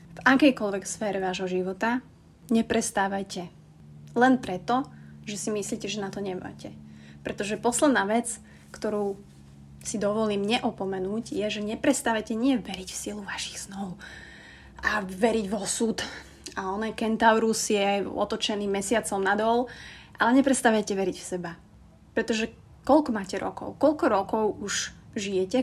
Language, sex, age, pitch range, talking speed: Slovak, female, 30-49, 190-230 Hz, 130 wpm